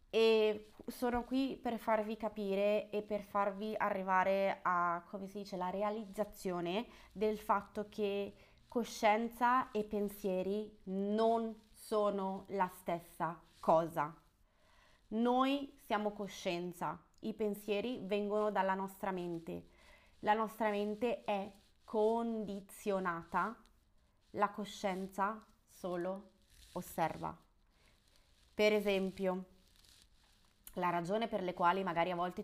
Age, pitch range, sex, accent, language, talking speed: 20-39, 175-215 Hz, female, native, Italian, 100 wpm